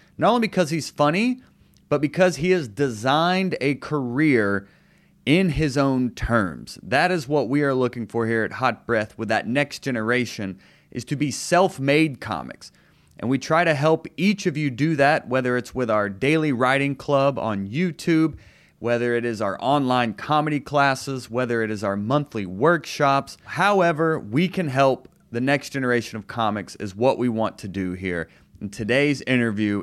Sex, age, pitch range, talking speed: male, 30-49, 110-170 Hz, 175 wpm